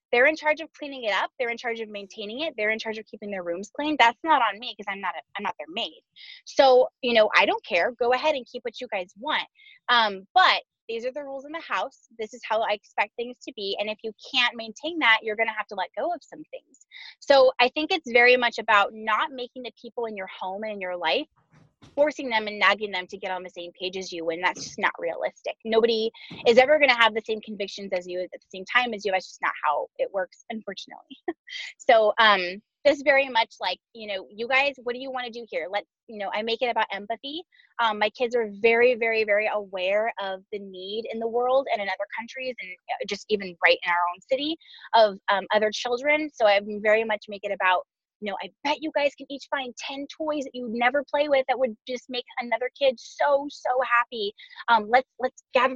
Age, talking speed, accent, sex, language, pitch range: 20-39, 250 wpm, American, female, English, 210-265 Hz